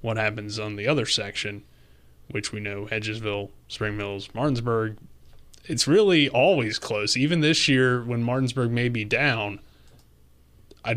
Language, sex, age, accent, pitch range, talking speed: English, male, 20-39, American, 100-125 Hz, 140 wpm